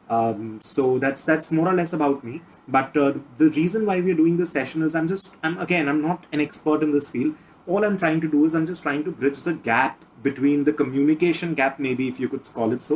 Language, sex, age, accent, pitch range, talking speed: English, male, 30-49, Indian, 125-160 Hz, 255 wpm